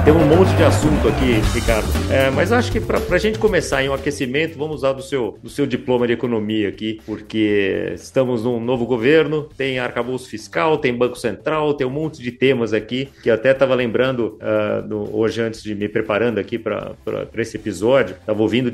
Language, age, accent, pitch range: Portuguese, 40-59, Brazilian, 110-135 Hz